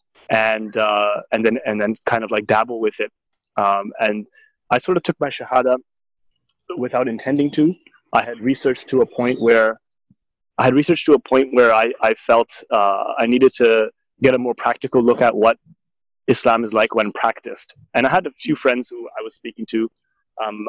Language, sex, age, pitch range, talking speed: English, male, 20-39, 110-145 Hz, 195 wpm